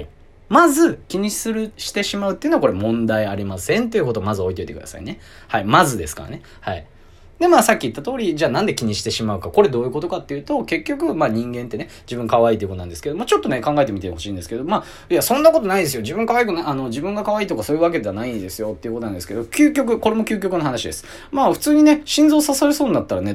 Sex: male